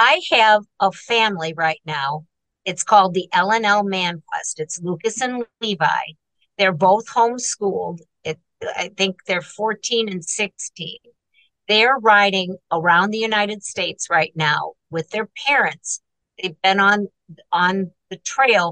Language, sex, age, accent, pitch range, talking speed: English, female, 50-69, American, 170-215 Hz, 135 wpm